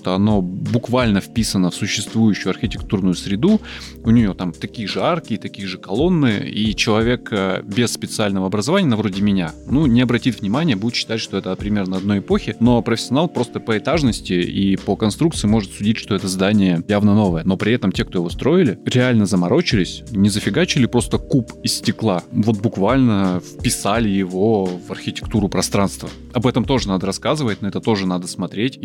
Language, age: Russian, 20-39